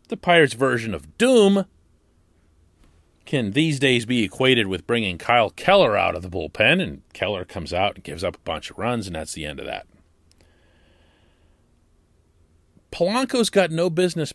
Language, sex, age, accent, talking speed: English, male, 40-59, American, 165 wpm